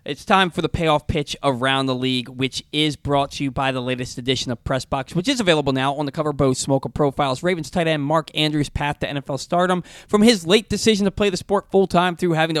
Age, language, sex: 20-39, English, male